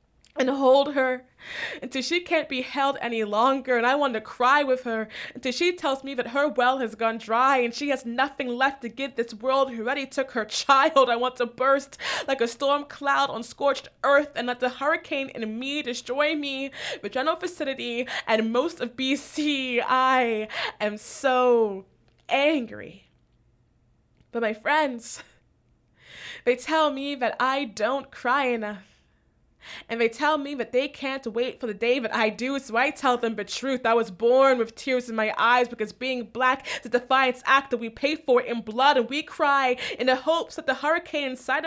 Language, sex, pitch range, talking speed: English, female, 245-290 Hz, 190 wpm